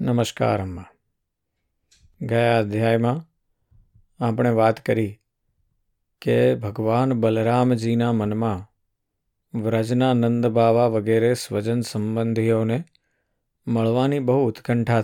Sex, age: male, 50-69